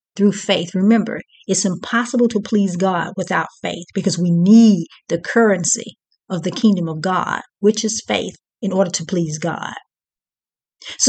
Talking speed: 155 wpm